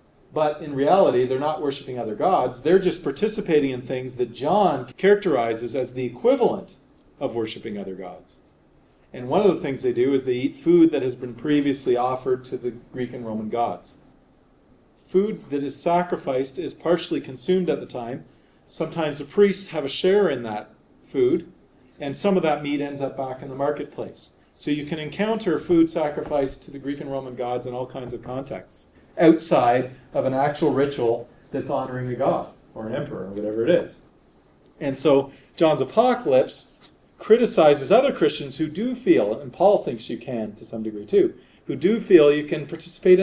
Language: English